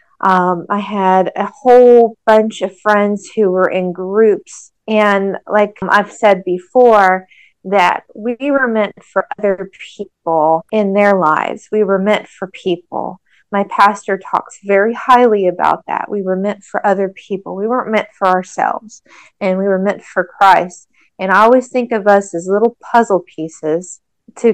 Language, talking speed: English, 165 wpm